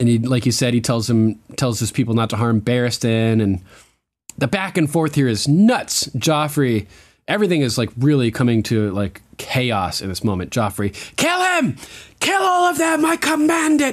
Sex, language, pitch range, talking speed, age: male, English, 110-150 Hz, 195 wpm, 20-39